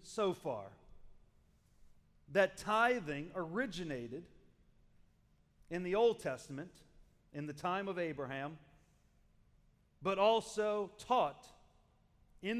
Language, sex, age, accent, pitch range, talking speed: English, male, 40-59, American, 140-210 Hz, 85 wpm